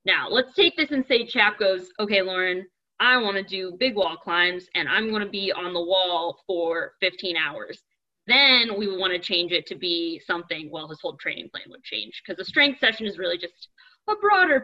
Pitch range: 175-255 Hz